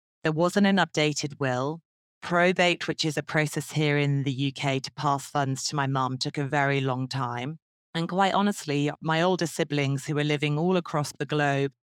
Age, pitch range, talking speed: 30-49, 145-175 Hz, 190 wpm